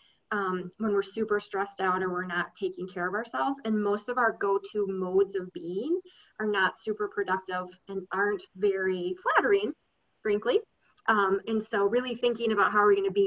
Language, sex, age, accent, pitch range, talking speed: English, female, 20-39, American, 195-240 Hz, 195 wpm